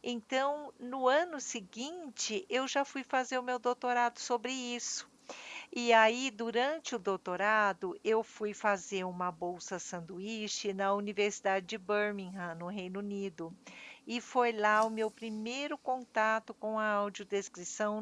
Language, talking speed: Portuguese, 135 wpm